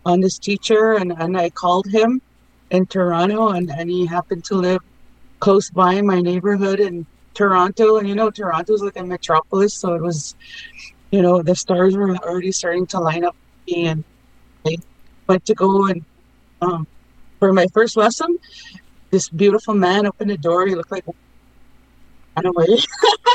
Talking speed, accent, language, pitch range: 175 wpm, American, English, 175-215 Hz